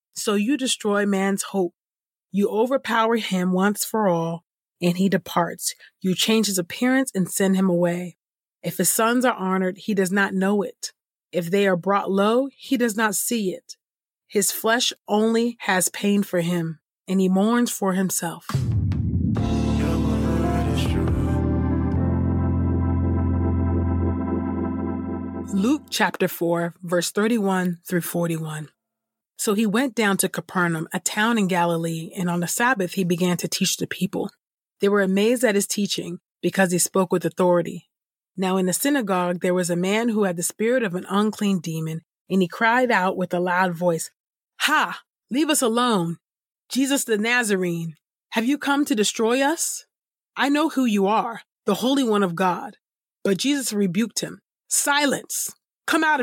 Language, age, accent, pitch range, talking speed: English, 30-49, American, 175-225 Hz, 155 wpm